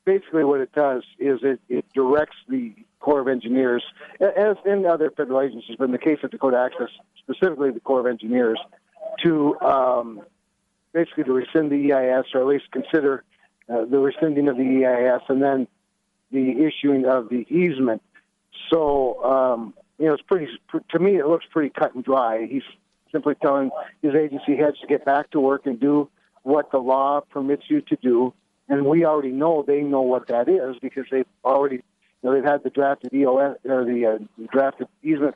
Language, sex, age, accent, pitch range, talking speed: English, male, 60-79, American, 130-155 Hz, 190 wpm